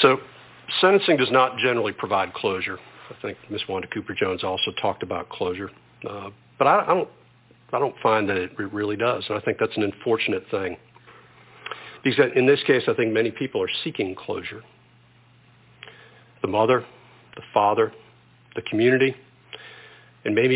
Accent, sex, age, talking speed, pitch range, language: American, male, 50-69, 155 wpm, 115-145 Hz, English